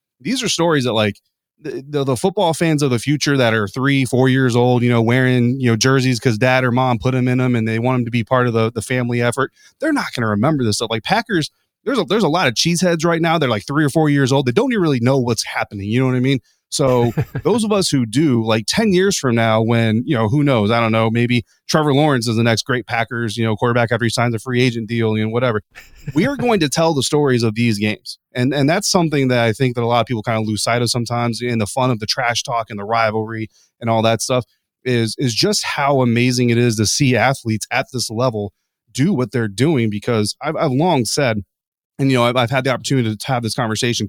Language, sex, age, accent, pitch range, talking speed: English, male, 30-49, American, 115-145 Hz, 270 wpm